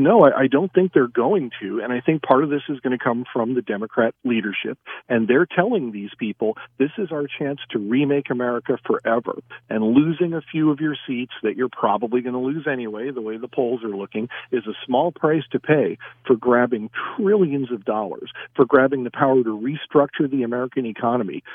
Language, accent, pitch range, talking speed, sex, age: English, American, 120-150 Hz, 205 wpm, male, 50-69